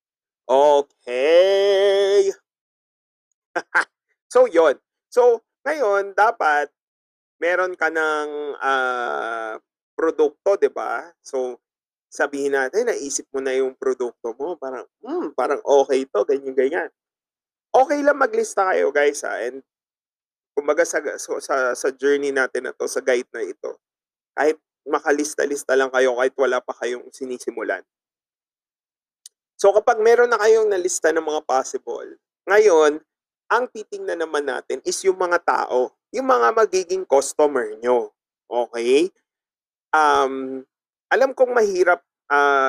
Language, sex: Filipino, male